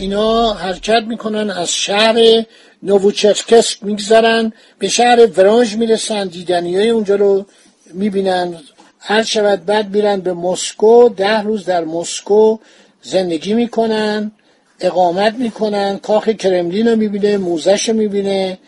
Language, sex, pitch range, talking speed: Persian, male, 190-230 Hz, 120 wpm